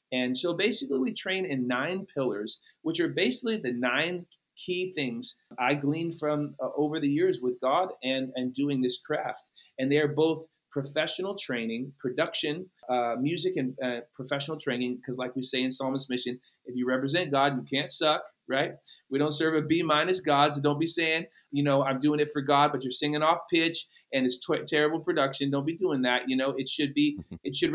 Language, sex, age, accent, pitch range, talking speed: English, male, 30-49, American, 130-165 Hz, 205 wpm